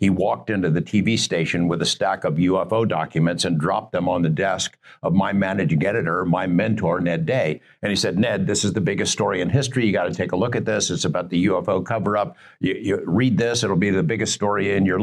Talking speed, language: 250 wpm, English